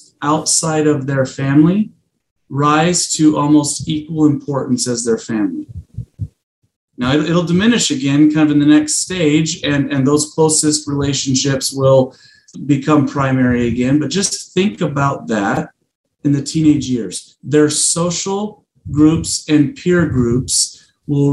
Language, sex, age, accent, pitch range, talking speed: English, male, 40-59, American, 135-155 Hz, 130 wpm